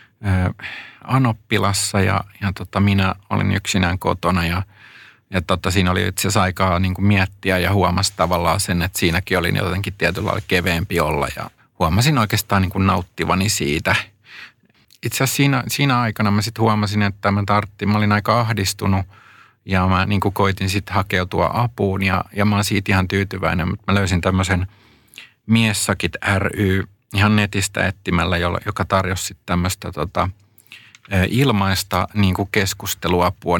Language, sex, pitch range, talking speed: Finnish, male, 90-105 Hz, 140 wpm